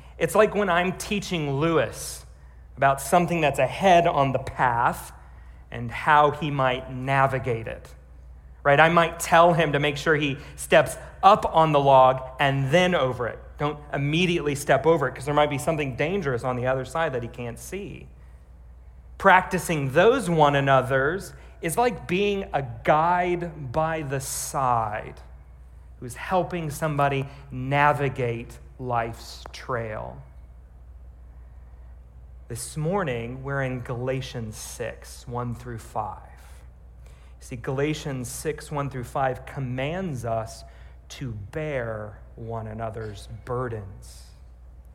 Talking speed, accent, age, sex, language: 130 wpm, American, 40-59, male, English